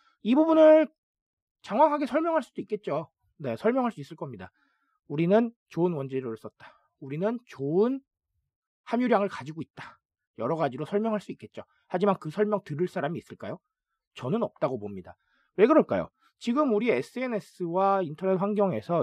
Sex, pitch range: male, 175-255 Hz